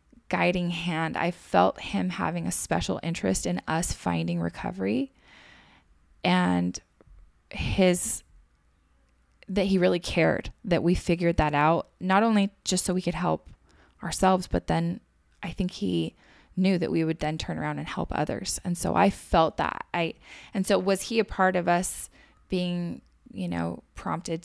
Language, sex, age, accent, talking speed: English, female, 20-39, American, 160 wpm